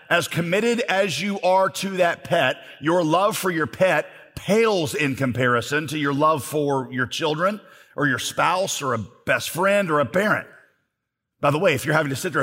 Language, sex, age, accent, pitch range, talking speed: English, male, 40-59, American, 150-215 Hz, 200 wpm